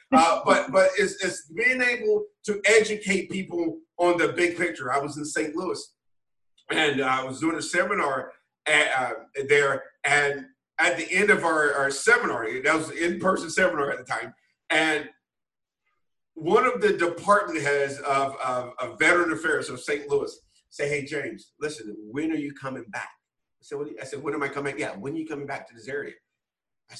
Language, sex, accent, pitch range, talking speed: English, male, American, 145-185 Hz, 195 wpm